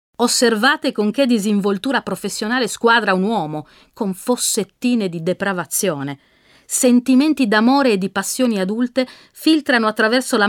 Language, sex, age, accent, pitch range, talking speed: Italian, female, 40-59, native, 170-235 Hz, 120 wpm